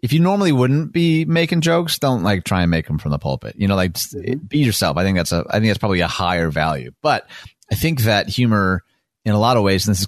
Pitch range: 90-125 Hz